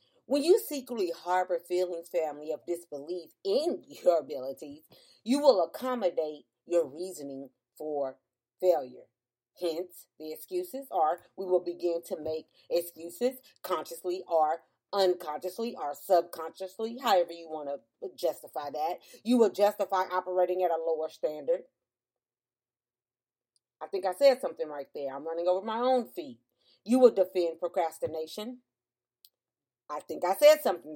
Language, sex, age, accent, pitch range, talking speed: English, female, 40-59, American, 160-210 Hz, 135 wpm